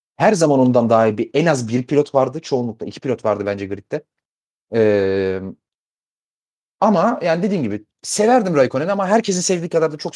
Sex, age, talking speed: male, 30-49, 170 wpm